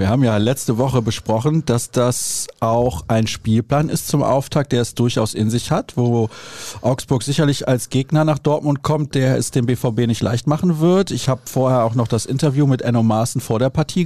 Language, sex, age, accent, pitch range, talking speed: German, male, 40-59, German, 115-150 Hz, 210 wpm